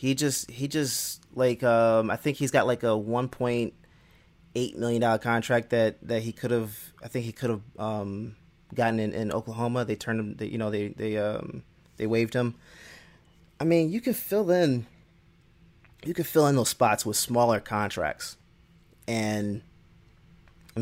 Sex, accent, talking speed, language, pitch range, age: male, American, 180 wpm, English, 105-120 Hz, 20-39